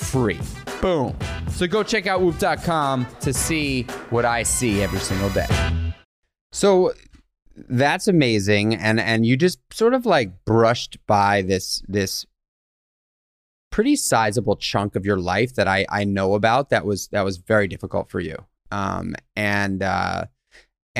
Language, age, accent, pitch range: English, 30-49, American, 95-115 Hz